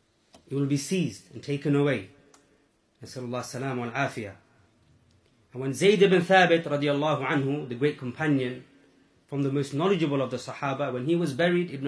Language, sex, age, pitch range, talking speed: English, male, 30-49, 135-185 Hz, 145 wpm